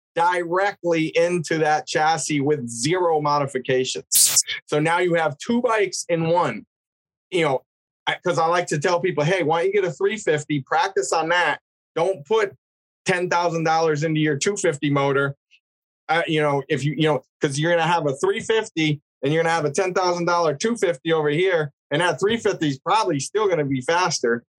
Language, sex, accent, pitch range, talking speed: English, male, American, 145-175 Hz, 180 wpm